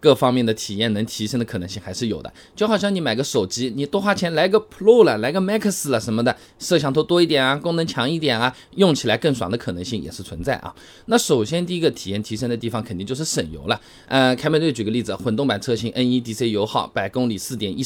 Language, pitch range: Chinese, 110-150 Hz